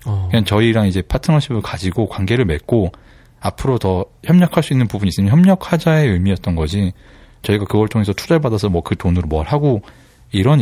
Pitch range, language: 95-140 Hz, Korean